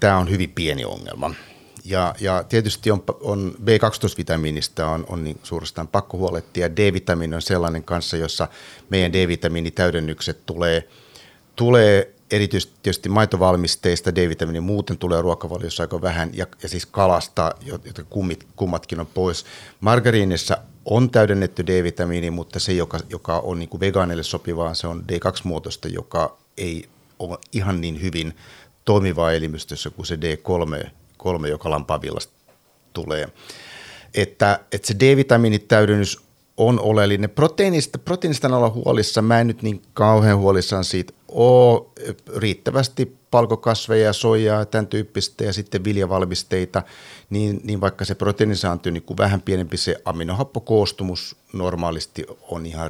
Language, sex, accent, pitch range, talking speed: Finnish, male, native, 85-105 Hz, 135 wpm